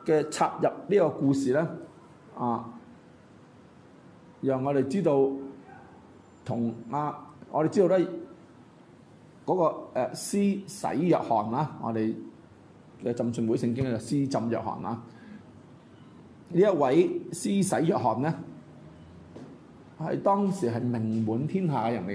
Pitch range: 120-180 Hz